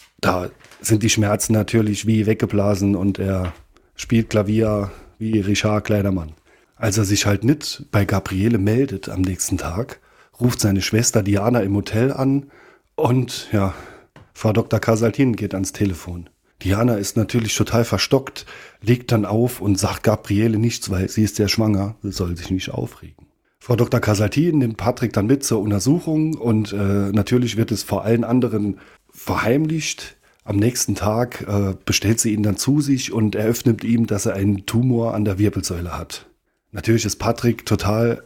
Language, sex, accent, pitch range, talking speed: German, male, German, 100-120 Hz, 165 wpm